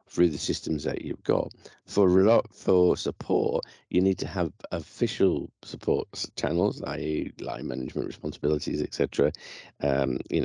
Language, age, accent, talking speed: English, 50-69, British, 130 wpm